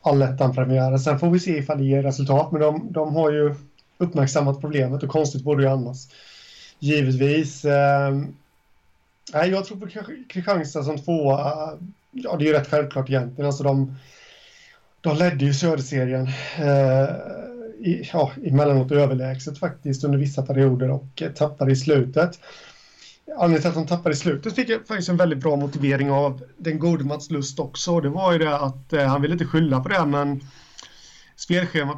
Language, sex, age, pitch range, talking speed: Swedish, male, 30-49, 135-155 Hz, 160 wpm